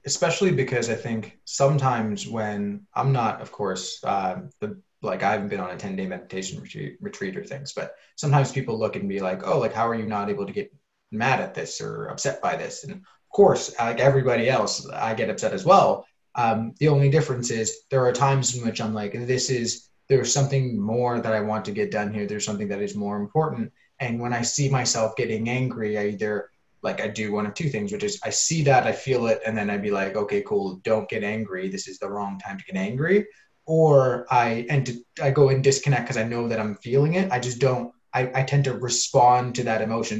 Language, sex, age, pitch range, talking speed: English, male, 20-39, 110-140 Hz, 235 wpm